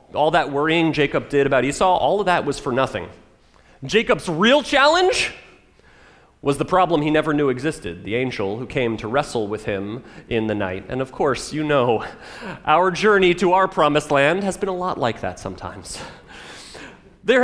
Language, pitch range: English, 145-220 Hz